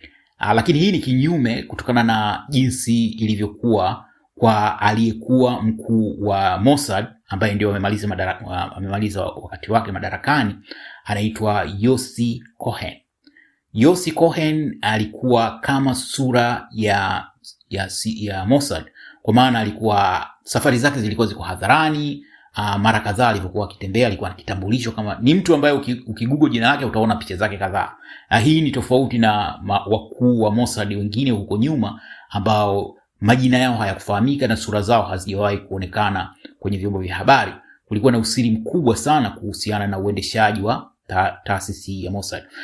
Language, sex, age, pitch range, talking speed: Swahili, male, 30-49, 105-130 Hz, 130 wpm